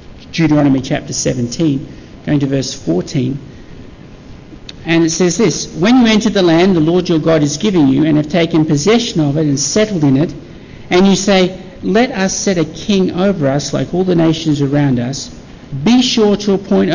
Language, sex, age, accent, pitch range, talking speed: English, male, 50-69, Australian, 150-195 Hz, 190 wpm